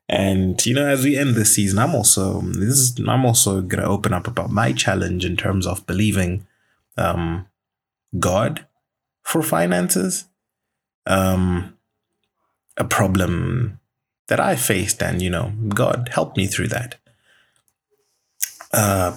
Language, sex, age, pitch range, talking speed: English, male, 20-39, 90-120 Hz, 140 wpm